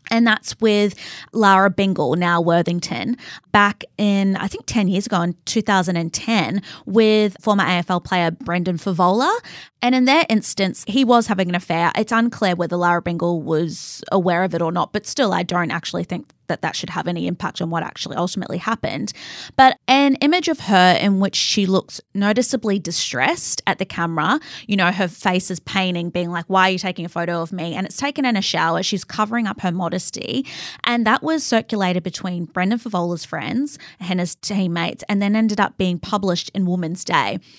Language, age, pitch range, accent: English, 20-39, 180-240 Hz, Australian